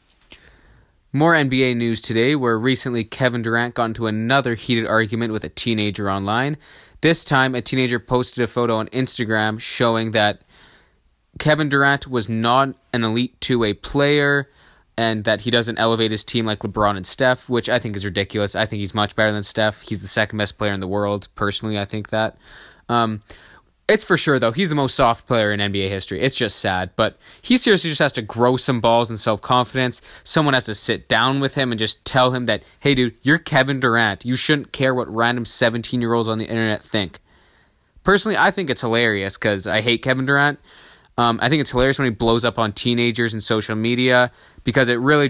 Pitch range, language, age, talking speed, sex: 105-125 Hz, English, 20-39, 205 wpm, male